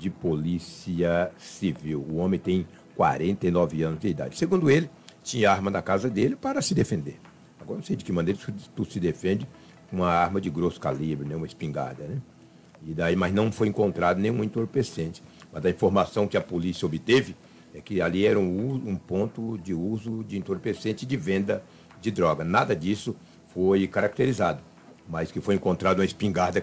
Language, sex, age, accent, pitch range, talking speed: Portuguese, male, 60-79, Brazilian, 85-115 Hz, 175 wpm